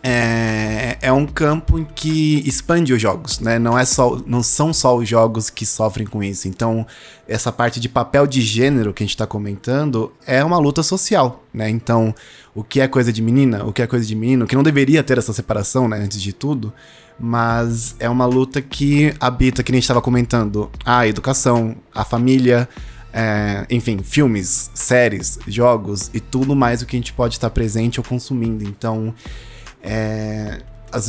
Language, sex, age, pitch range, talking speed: Portuguese, male, 20-39, 110-130 Hz, 185 wpm